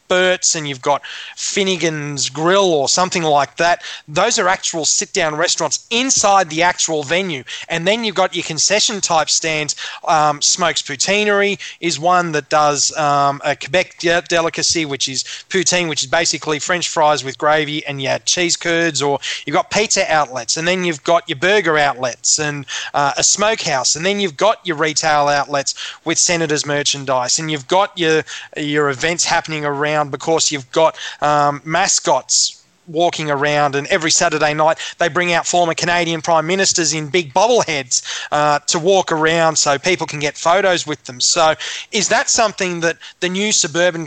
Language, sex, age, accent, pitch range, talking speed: English, male, 20-39, Australian, 150-180 Hz, 170 wpm